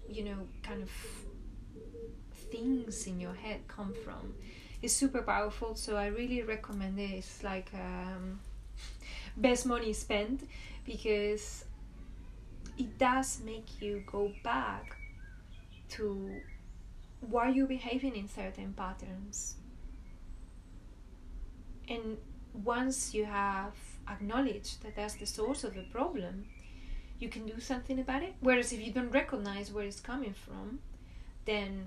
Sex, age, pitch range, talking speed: female, 20-39, 185-225 Hz, 125 wpm